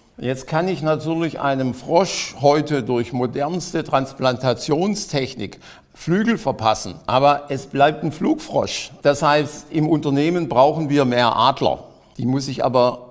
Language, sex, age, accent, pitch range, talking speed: German, male, 50-69, German, 125-155 Hz, 135 wpm